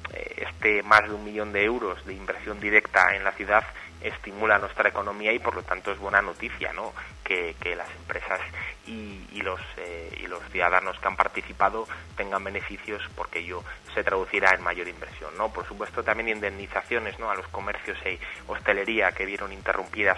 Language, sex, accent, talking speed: Spanish, male, Spanish, 185 wpm